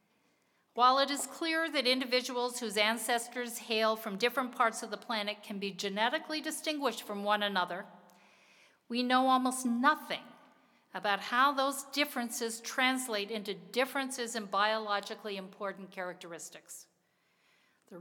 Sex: female